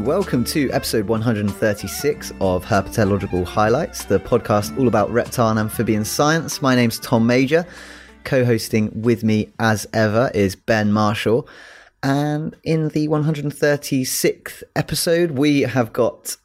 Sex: male